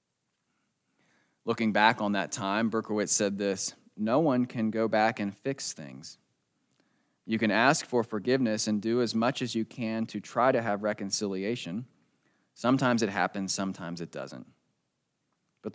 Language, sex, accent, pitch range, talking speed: English, male, American, 95-115 Hz, 150 wpm